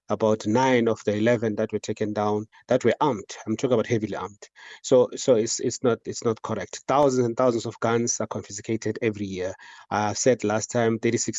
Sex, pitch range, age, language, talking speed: male, 110-130 Hz, 30-49, English, 205 wpm